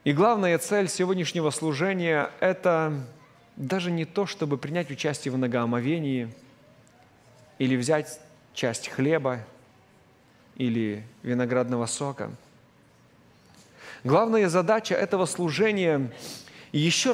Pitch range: 140-185 Hz